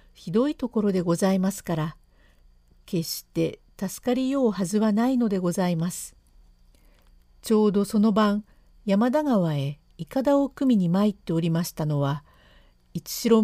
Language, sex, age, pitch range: Japanese, female, 50-69, 150-225 Hz